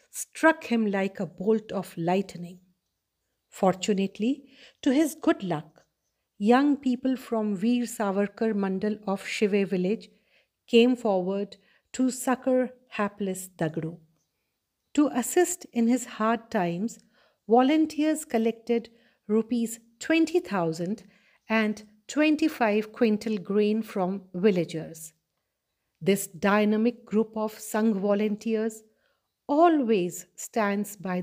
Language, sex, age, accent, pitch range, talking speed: Hindi, female, 50-69, native, 195-245 Hz, 100 wpm